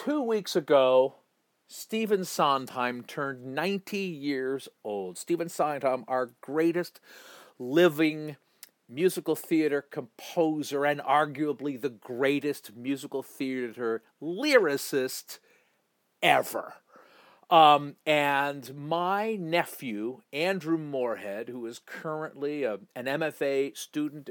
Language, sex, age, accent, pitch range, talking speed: English, male, 50-69, American, 135-195 Hz, 95 wpm